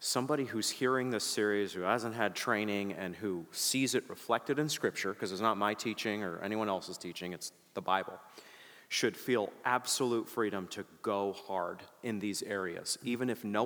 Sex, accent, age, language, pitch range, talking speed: male, American, 30-49, English, 105-130 Hz, 180 wpm